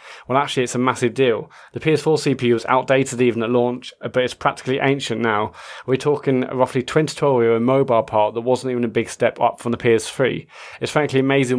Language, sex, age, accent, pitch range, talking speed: English, male, 20-39, British, 115-130 Hz, 200 wpm